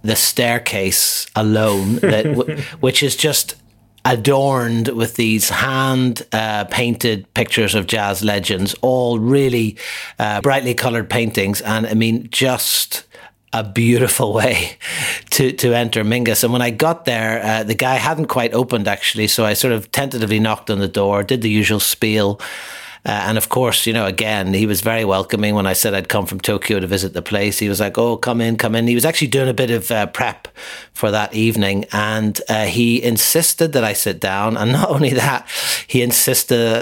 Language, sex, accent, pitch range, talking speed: English, male, Irish, 105-125 Hz, 185 wpm